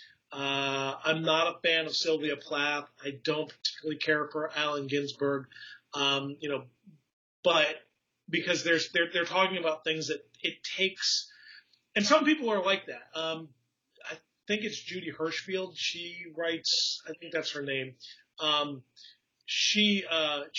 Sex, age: male, 30-49